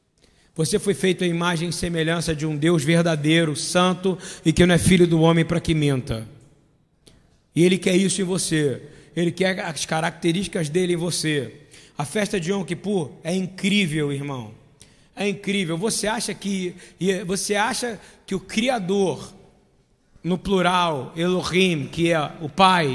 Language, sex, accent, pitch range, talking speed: Portuguese, male, Brazilian, 165-245 Hz, 150 wpm